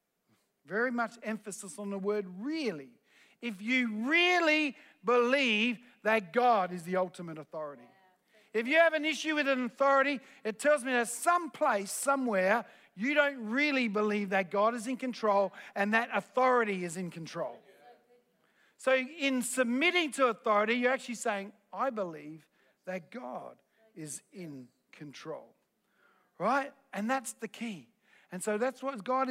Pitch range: 200-260 Hz